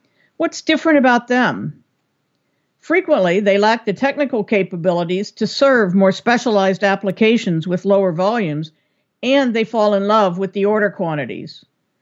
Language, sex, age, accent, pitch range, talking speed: English, female, 50-69, American, 195-245 Hz, 135 wpm